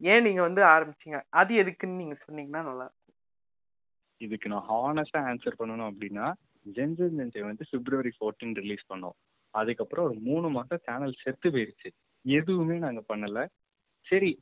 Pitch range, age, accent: 110-145 Hz, 20-39, native